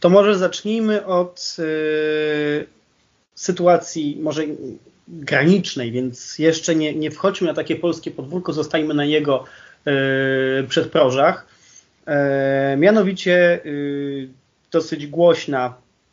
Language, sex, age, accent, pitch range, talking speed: Polish, male, 30-49, native, 130-170 Hz, 100 wpm